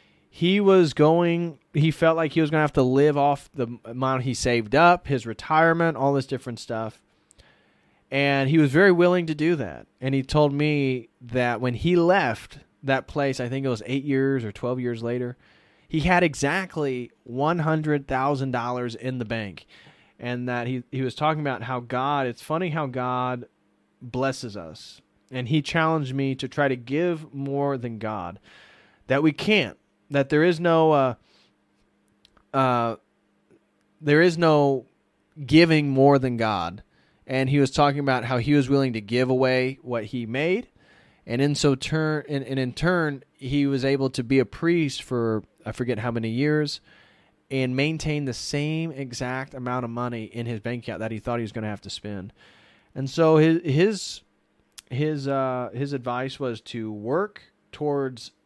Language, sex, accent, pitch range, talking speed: English, male, American, 120-150 Hz, 175 wpm